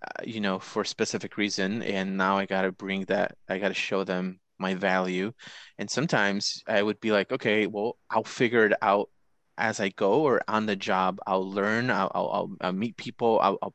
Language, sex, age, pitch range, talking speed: English, male, 20-39, 95-115 Hz, 210 wpm